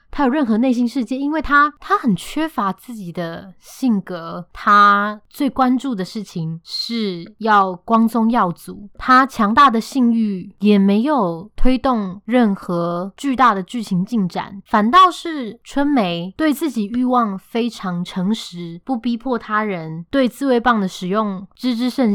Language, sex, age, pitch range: Chinese, female, 20-39, 190-250 Hz